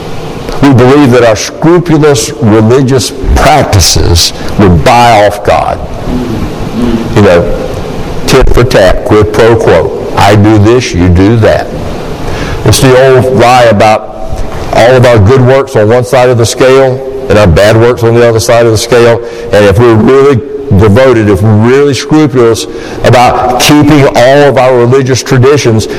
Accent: American